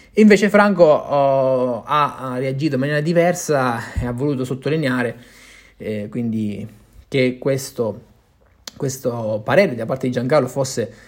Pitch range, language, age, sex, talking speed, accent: 120-160 Hz, Italian, 20-39, male, 125 wpm, native